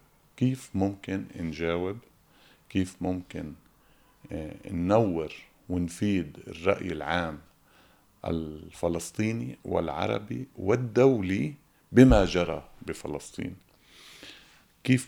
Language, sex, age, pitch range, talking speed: Arabic, male, 50-69, 85-105 Hz, 65 wpm